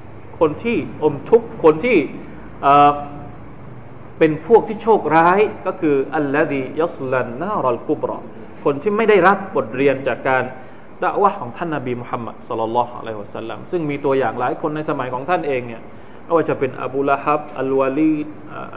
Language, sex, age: Thai, male, 20-39